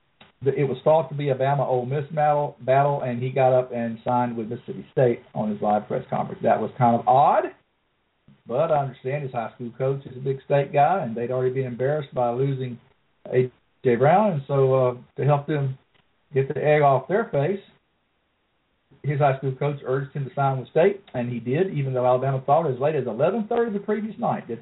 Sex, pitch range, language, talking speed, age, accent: male, 130-155 Hz, English, 215 wpm, 50-69, American